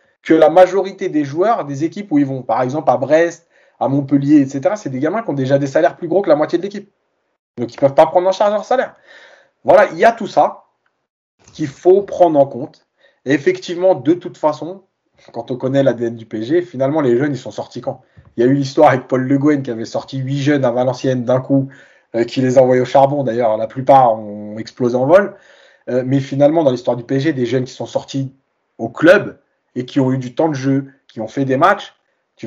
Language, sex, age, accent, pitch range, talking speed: French, male, 20-39, French, 130-170 Hz, 240 wpm